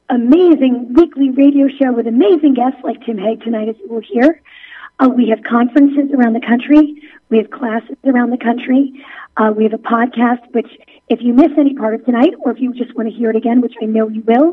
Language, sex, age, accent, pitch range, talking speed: English, female, 40-59, American, 235-285 Hz, 225 wpm